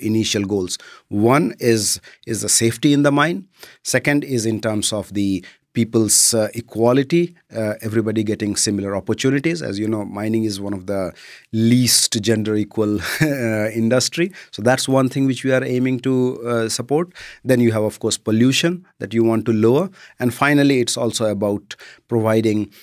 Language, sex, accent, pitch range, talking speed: Swedish, male, Indian, 105-125 Hz, 170 wpm